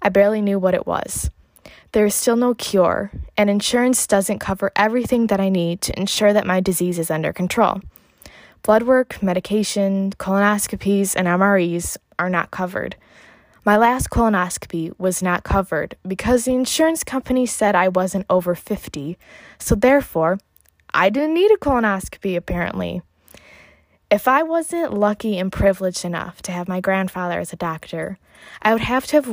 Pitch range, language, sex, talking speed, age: 180-220 Hz, English, female, 160 wpm, 20-39